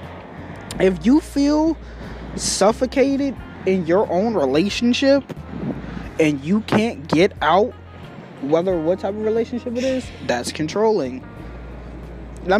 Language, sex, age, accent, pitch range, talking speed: English, male, 20-39, American, 150-250 Hz, 110 wpm